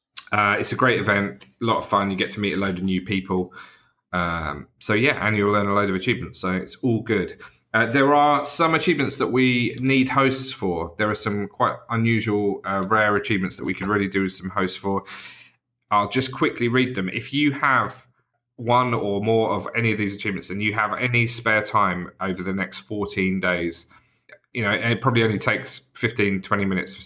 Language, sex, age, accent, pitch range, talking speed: English, male, 30-49, British, 95-120 Hz, 215 wpm